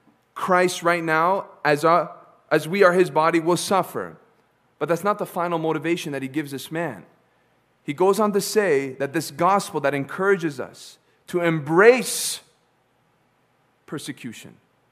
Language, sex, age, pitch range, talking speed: English, male, 40-59, 125-170 Hz, 150 wpm